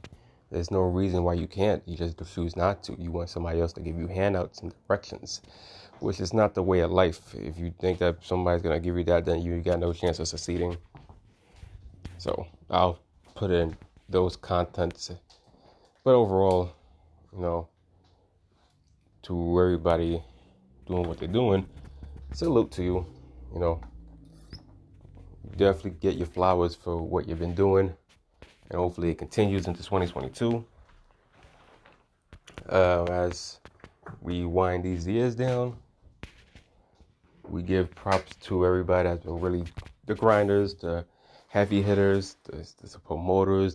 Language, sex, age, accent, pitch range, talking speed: English, male, 20-39, American, 85-95 Hz, 145 wpm